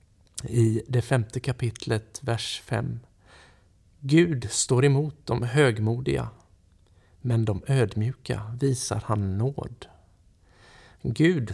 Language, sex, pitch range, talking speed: Swedish, male, 95-135 Hz, 95 wpm